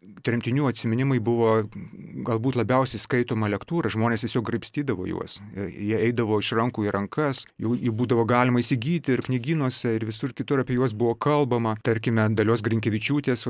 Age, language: 30-49, English